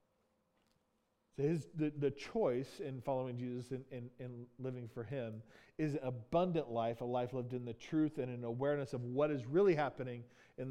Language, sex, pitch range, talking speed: English, male, 120-150 Hz, 180 wpm